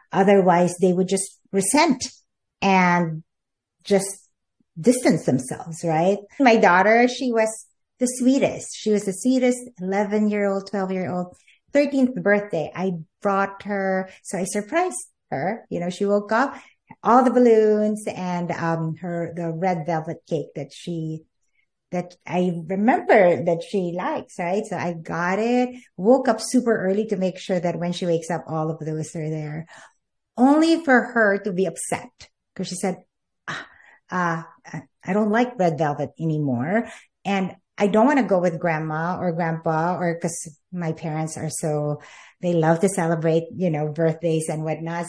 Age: 50-69